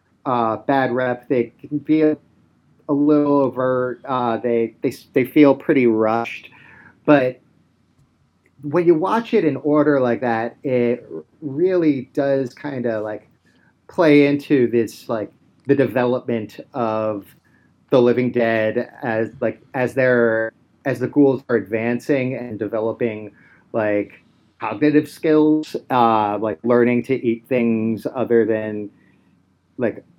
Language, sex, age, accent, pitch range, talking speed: English, male, 30-49, American, 110-135 Hz, 130 wpm